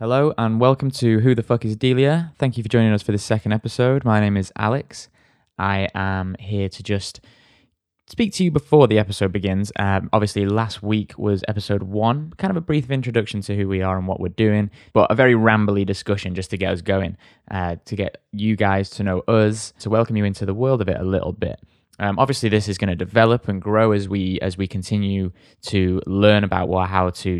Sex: male